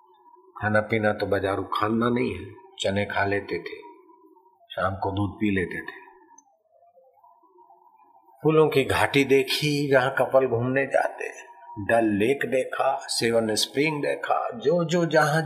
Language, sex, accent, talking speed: Hindi, male, native, 130 wpm